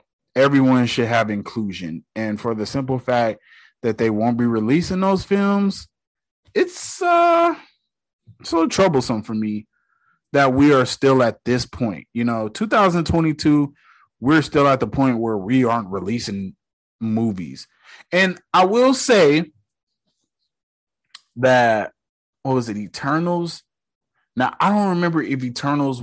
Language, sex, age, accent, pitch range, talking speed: English, male, 30-49, American, 115-180 Hz, 130 wpm